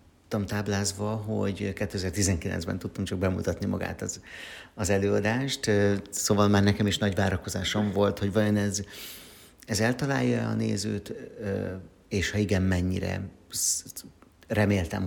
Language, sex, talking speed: Hungarian, male, 115 wpm